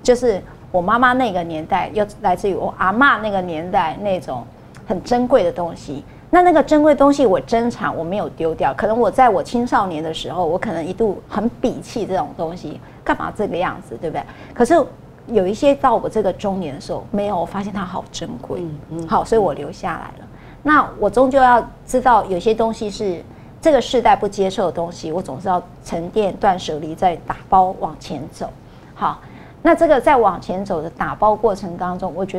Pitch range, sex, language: 180-240 Hz, female, Chinese